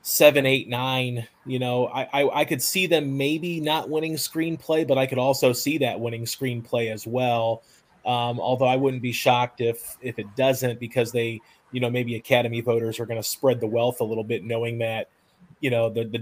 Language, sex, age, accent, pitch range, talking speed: English, male, 30-49, American, 115-135 Hz, 210 wpm